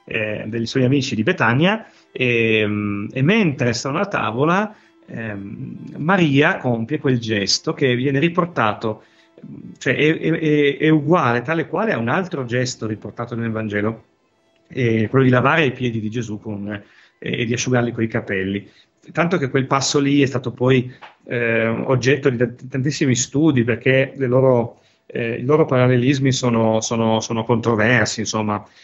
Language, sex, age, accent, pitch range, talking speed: Italian, male, 40-59, native, 110-140 Hz, 160 wpm